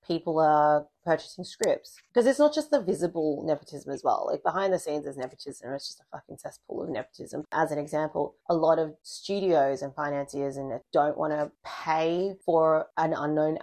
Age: 30-49